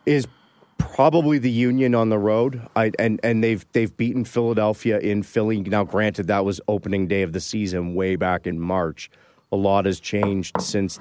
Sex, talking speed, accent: male, 185 wpm, American